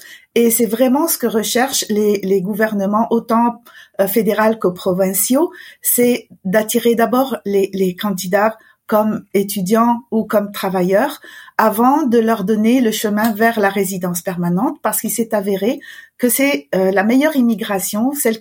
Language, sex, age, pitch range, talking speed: French, female, 50-69, 200-255 Hz, 150 wpm